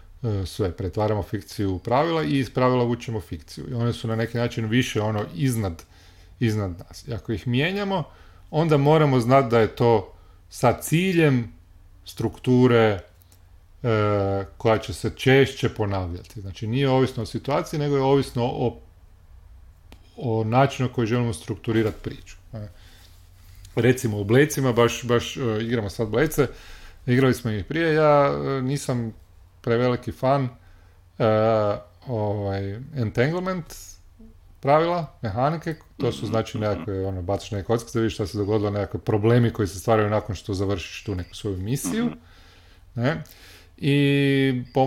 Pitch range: 95-130 Hz